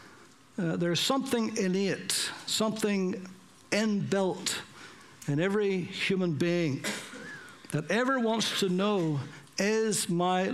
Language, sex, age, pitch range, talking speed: English, male, 60-79, 165-210 Hz, 95 wpm